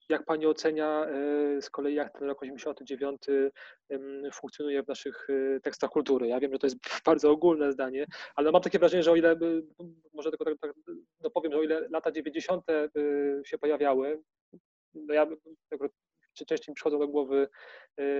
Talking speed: 165 wpm